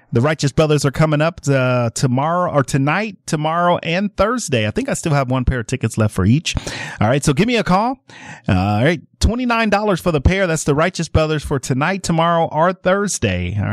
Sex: male